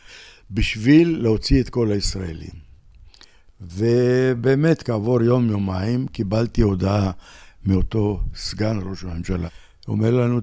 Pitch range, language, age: 90-115 Hz, Hebrew, 60-79